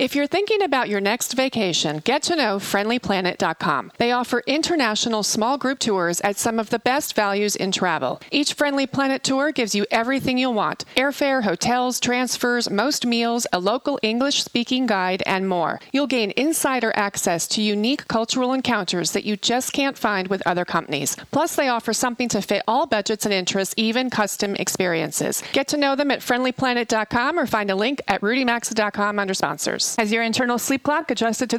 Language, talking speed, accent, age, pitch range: English, 180 wpm, American, 40-59, 195-255 Hz